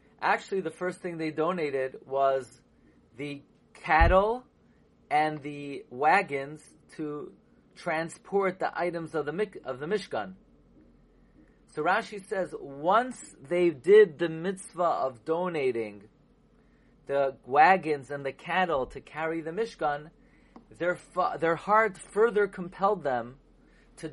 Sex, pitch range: male, 160-215 Hz